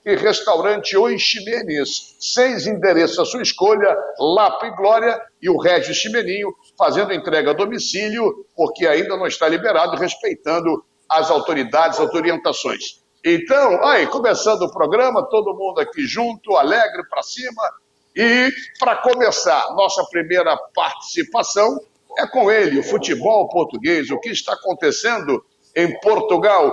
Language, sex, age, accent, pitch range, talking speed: Portuguese, male, 60-79, Brazilian, 200-290 Hz, 135 wpm